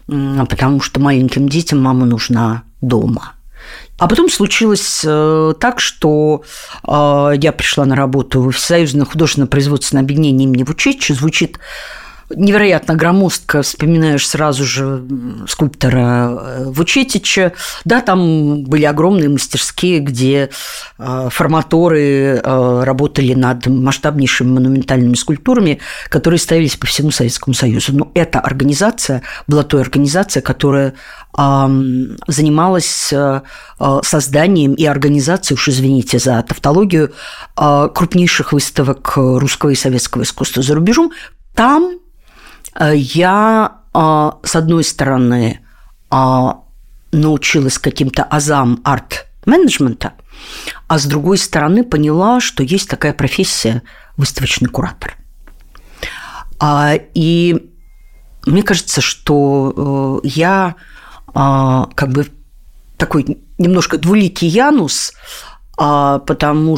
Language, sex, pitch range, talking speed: Russian, female, 135-160 Hz, 95 wpm